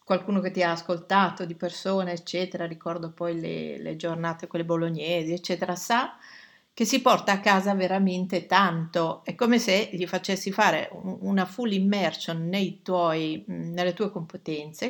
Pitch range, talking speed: 170-200 Hz, 155 wpm